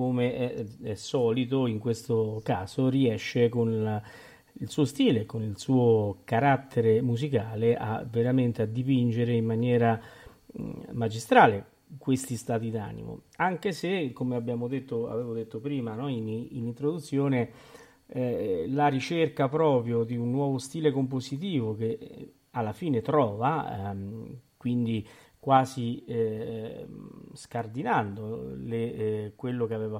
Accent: native